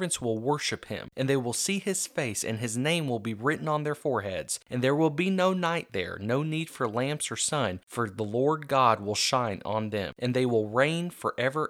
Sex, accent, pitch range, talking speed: male, American, 110-155 Hz, 225 wpm